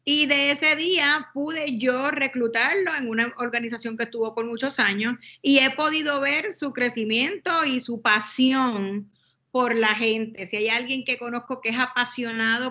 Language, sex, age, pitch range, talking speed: English, female, 30-49, 230-275 Hz, 165 wpm